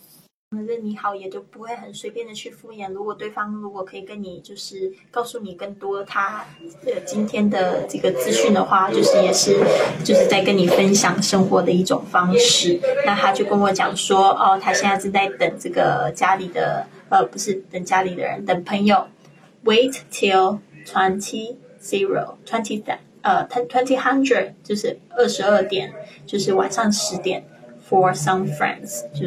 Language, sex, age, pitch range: Chinese, female, 20-39, 190-230 Hz